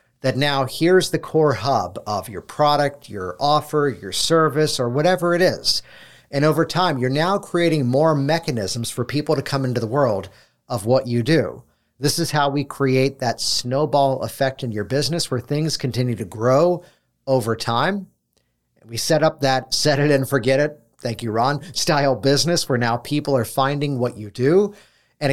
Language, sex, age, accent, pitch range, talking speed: English, male, 50-69, American, 115-150 Hz, 180 wpm